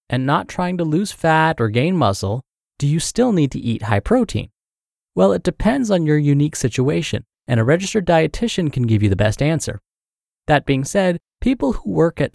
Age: 30-49